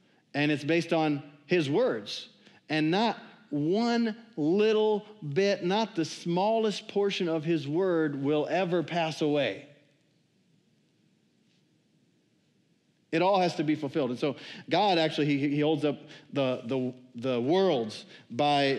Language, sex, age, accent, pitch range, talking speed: English, male, 50-69, American, 140-175 Hz, 130 wpm